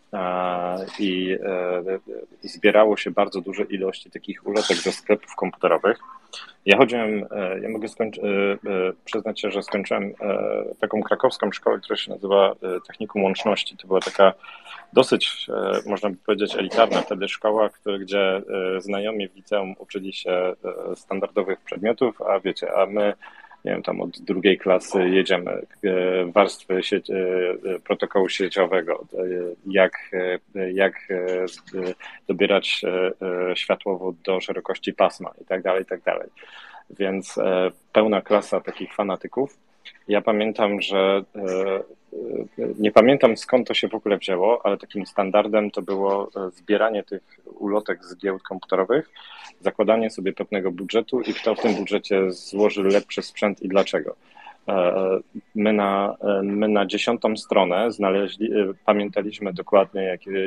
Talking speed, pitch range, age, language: 125 wpm, 95-105 Hz, 40-59, Polish